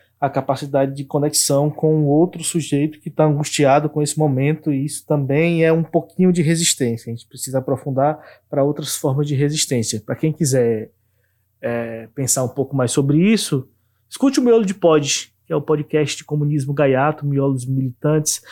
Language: Portuguese